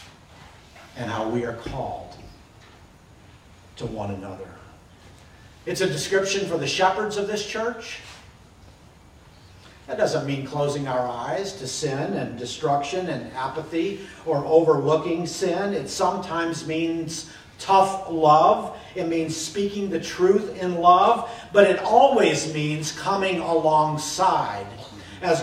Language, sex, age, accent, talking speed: English, male, 50-69, American, 120 wpm